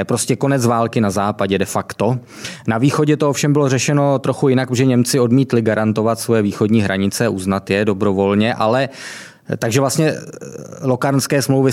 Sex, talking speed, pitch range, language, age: male, 155 wpm, 105-125 Hz, Czech, 20-39